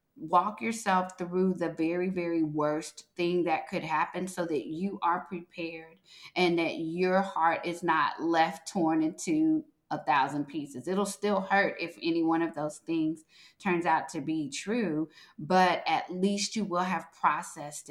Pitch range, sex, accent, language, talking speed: 160-195 Hz, female, American, English, 165 wpm